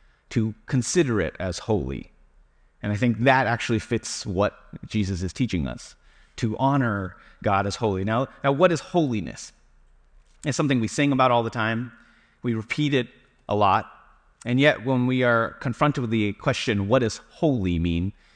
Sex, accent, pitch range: male, American, 105-140 Hz